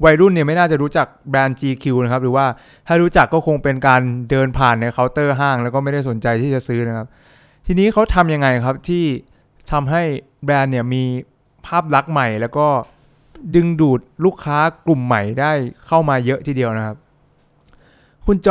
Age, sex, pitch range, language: 20-39, male, 125-155 Hz, English